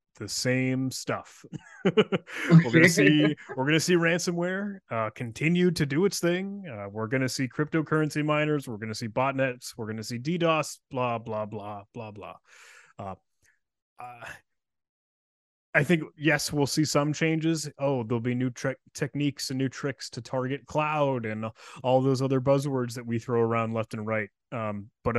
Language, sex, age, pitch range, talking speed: English, male, 20-39, 115-145 Hz, 165 wpm